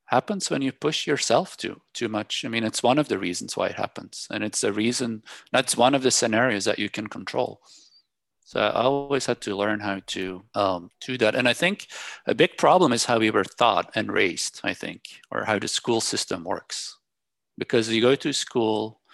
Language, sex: English, male